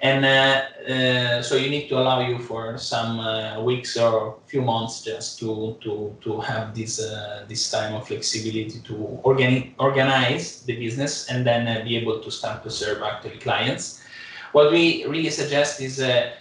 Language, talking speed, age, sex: English, 180 wpm, 20-39, male